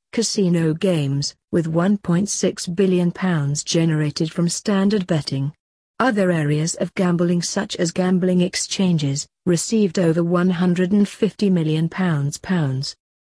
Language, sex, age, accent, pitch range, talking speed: English, female, 50-69, British, 160-190 Hz, 95 wpm